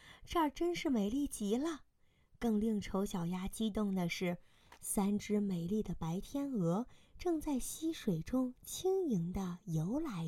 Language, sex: Chinese, female